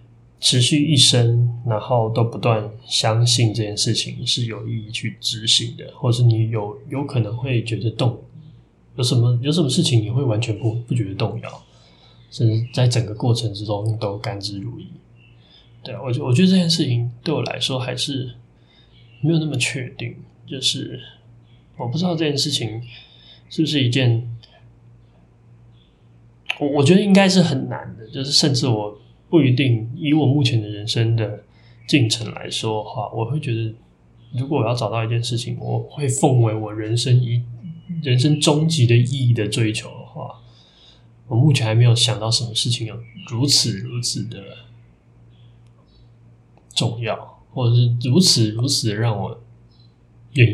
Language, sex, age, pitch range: Chinese, male, 20-39, 115-135 Hz